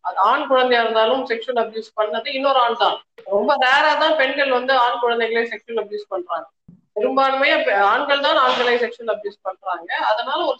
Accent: native